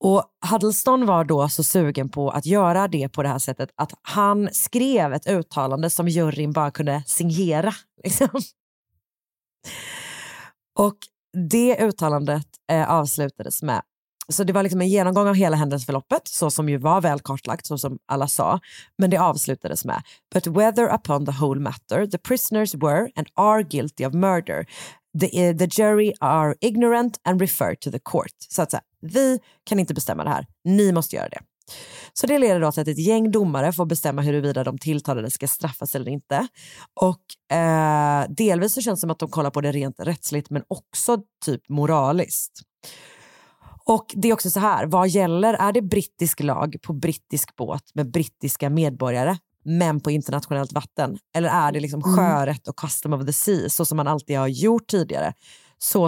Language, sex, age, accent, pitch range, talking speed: Swedish, female, 30-49, native, 145-195 Hz, 175 wpm